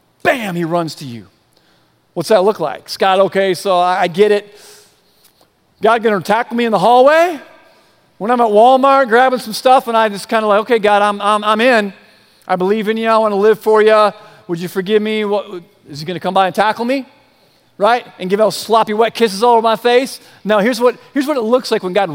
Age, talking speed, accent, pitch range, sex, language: 40-59, 230 wpm, American, 200-270 Hz, male, English